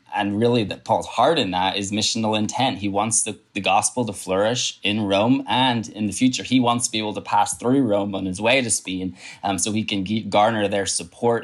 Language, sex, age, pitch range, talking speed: English, male, 20-39, 95-105 Hz, 230 wpm